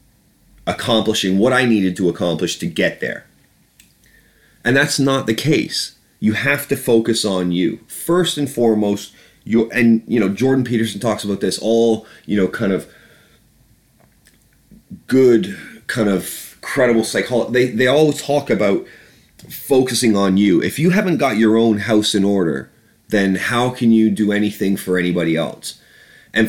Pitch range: 95-120 Hz